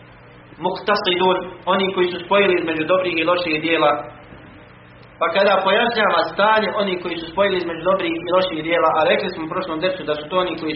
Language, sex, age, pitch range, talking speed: English, male, 40-59, 150-185 Hz, 190 wpm